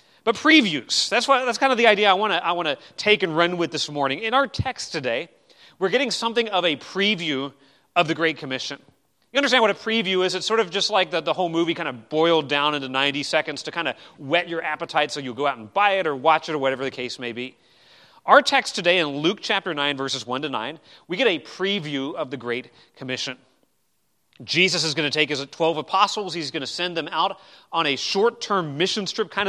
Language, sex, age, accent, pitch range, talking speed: English, male, 30-49, American, 145-205 Hz, 235 wpm